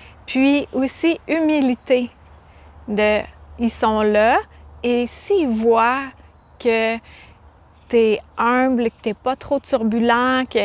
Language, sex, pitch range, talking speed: French, female, 215-260 Hz, 105 wpm